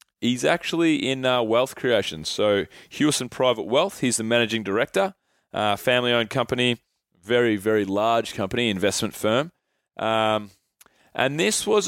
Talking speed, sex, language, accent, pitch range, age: 135 wpm, male, English, Australian, 110-135 Hz, 20-39